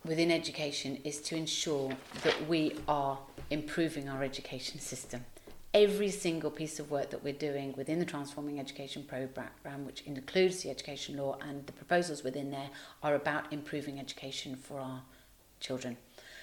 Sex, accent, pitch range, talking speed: female, British, 140-170 Hz, 155 wpm